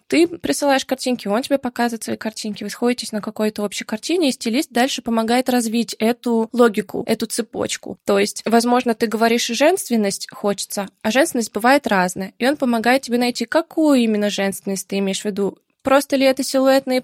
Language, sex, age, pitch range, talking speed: Russian, female, 20-39, 215-255 Hz, 180 wpm